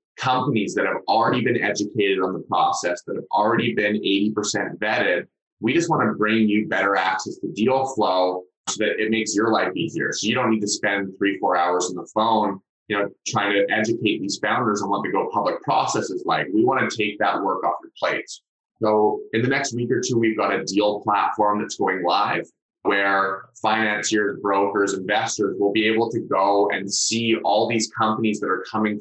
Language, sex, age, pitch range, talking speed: English, male, 20-39, 100-115 Hz, 210 wpm